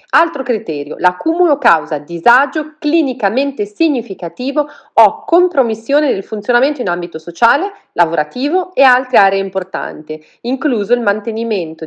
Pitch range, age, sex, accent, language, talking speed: 195-280 Hz, 40-59, female, native, Italian, 110 wpm